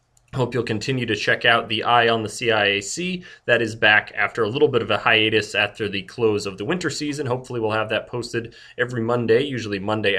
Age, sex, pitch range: 30-49, male, 110-150 Hz